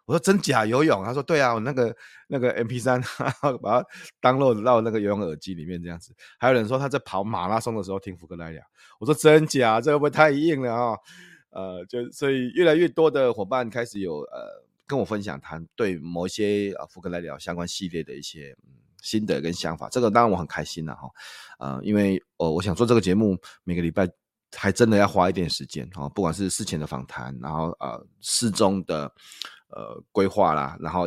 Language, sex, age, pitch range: Chinese, male, 30-49, 85-120 Hz